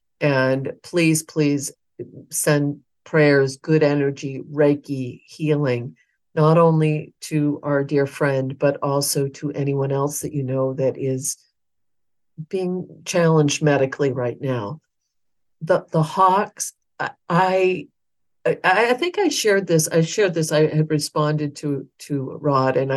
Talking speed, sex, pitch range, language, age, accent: 130 wpm, female, 130-155 Hz, English, 50-69, American